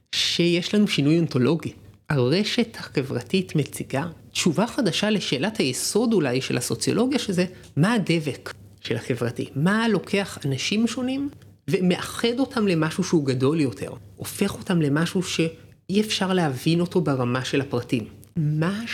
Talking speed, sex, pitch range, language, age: 125 wpm, male, 135-210 Hz, Hebrew, 30-49